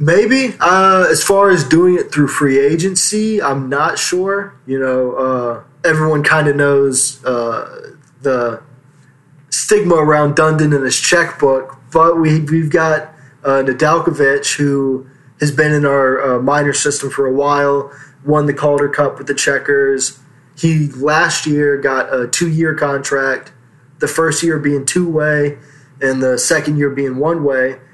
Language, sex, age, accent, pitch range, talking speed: English, male, 20-39, American, 135-155 Hz, 150 wpm